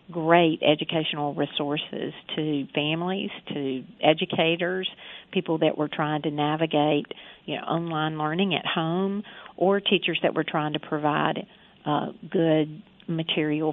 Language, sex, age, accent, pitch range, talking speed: English, female, 50-69, American, 150-180 Hz, 125 wpm